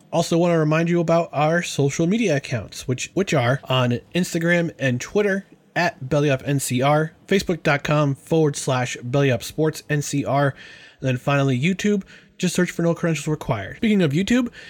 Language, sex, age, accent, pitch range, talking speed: English, male, 20-39, American, 130-165 Hz, 145 wpm